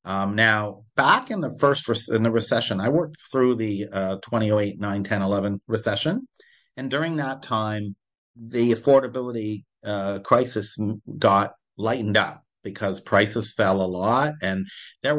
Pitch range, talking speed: 95-125 Hz, 150 wpm